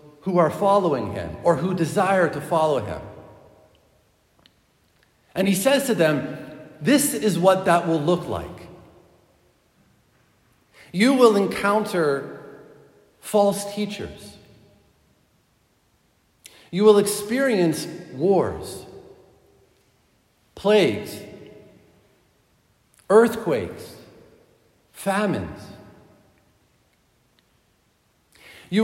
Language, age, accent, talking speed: English, 50-69, American, 75 wpm